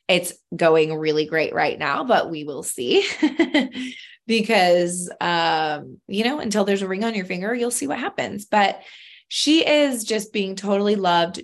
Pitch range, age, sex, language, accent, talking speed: 165-210 Hz, 20-39, female, English, American, 170 wpm